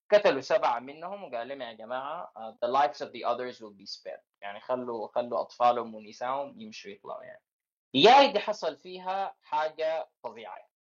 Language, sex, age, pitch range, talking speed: Arabic, male, 20-39, 115-190 Hz, 165 wpm